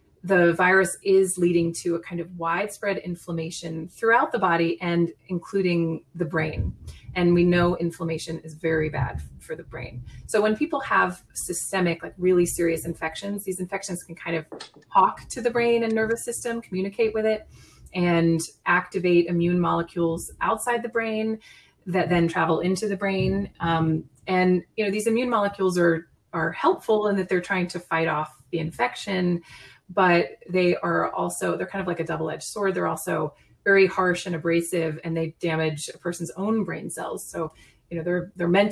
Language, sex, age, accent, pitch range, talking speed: English, female, 30-49, American, 160-190 Hz, 175 wpm